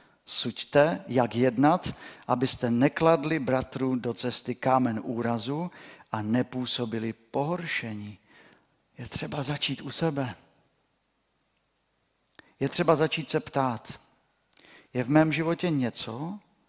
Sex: male